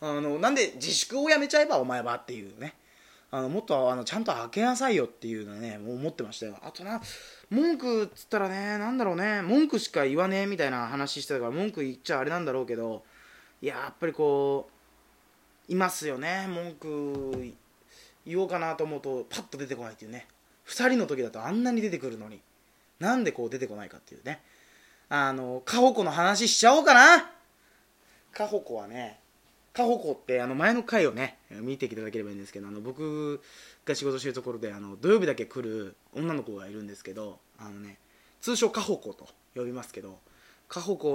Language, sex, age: Japanese, male, 20-39